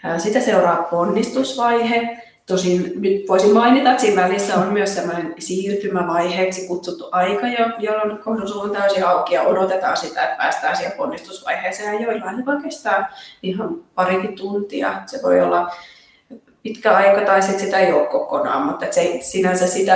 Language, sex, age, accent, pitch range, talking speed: Finnish, female, 20-39, native, 185-230 Hz, 130 wpm